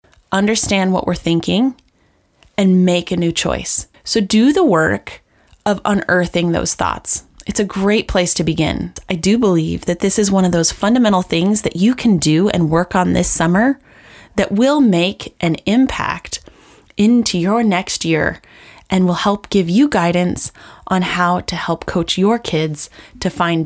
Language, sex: English, female